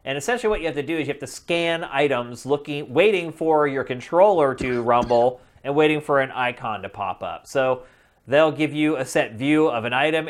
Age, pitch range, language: 30-49, 120-155 Hz, English